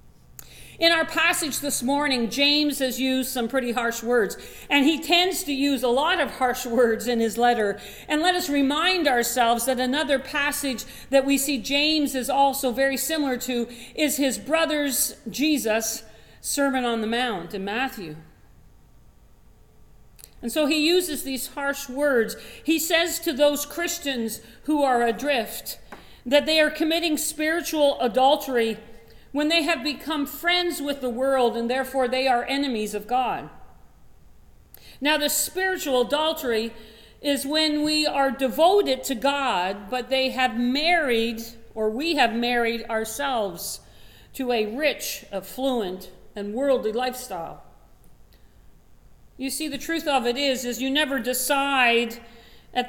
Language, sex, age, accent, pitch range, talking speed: English, female, 50-69, American, 240-290 Hz, 145 wpm